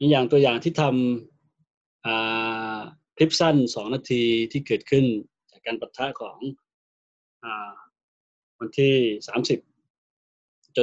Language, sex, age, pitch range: Thai, male, 20-39, 115-150 Hz